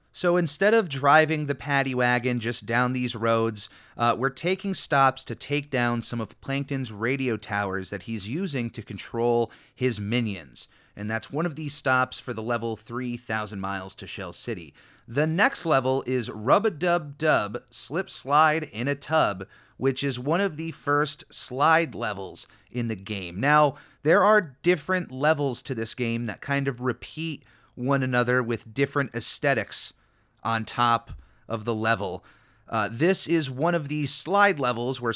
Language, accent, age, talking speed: English, American, 30-49, 160 wpm